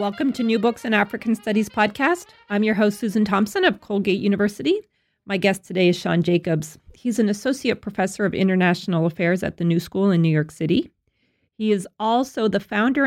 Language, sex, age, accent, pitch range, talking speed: English, female, 40-59, American, 165-210 Hz, 195 wpm